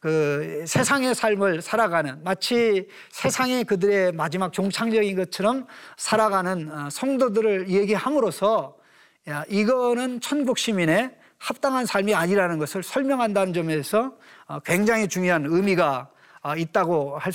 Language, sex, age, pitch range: Korean, male, 40-59, 170-245 Hz